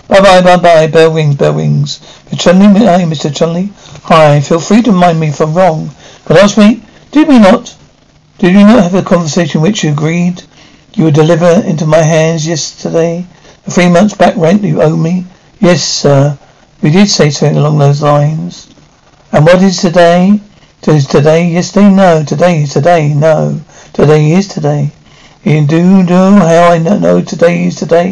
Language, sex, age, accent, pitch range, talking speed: English, male, 60-79, British, 155-190 Hz, 175 wpm